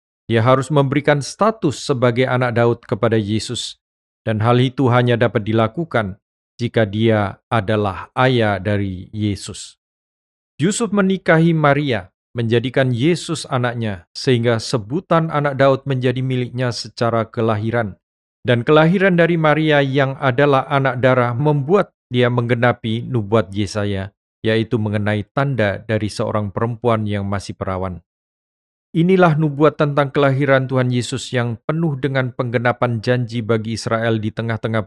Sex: male